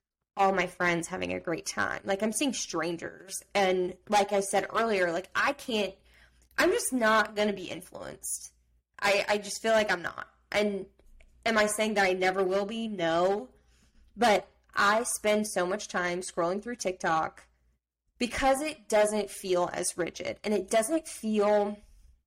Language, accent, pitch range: English, American, 175-215 Hz